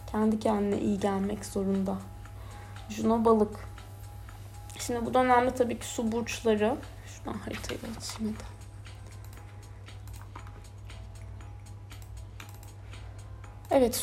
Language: Turkish